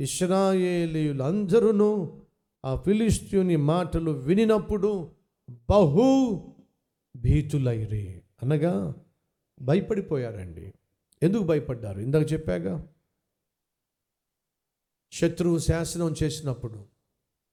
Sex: male